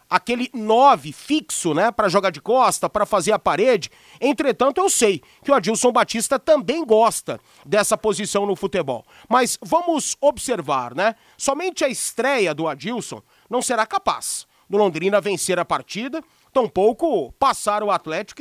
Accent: Brazilian